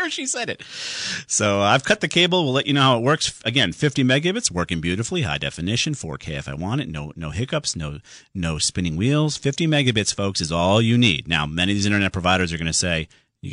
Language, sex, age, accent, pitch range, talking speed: English, male, 40-59, American, 85-135 Hz, 230 wpm